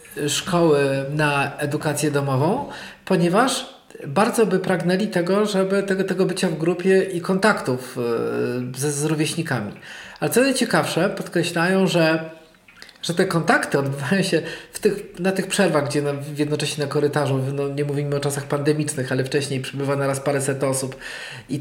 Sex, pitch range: male, 150-210 Hz